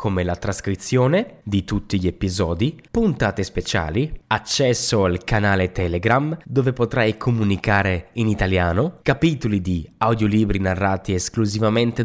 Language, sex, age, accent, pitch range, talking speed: Italian, male, 20-39, native, 100-160 Hz, 115 wpm